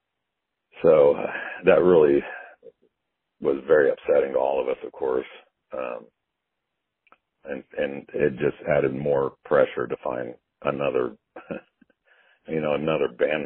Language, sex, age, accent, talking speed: English, male, 60-79, American, 120 wpm